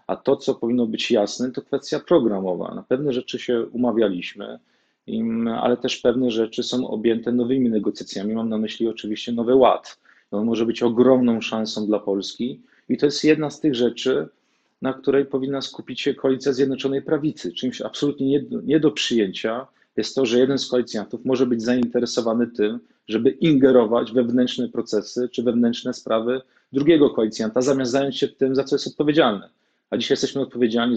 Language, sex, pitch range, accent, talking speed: Polish, male, 115-135 Hz, native, 170 wpm